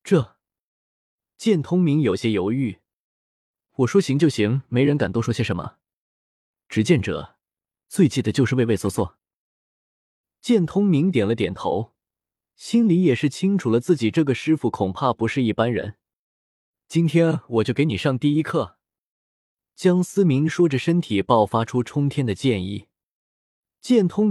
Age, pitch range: 20-39, 110-165 Hz